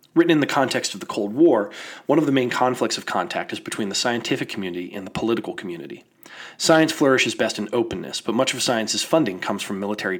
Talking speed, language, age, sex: 220 wpm, English, 30-49, male